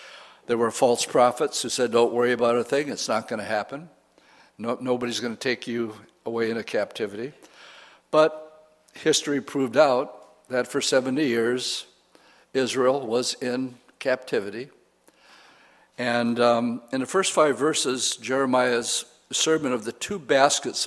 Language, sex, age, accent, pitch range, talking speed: English, male, 60-79, American, 115-135 Hz, 135 wpm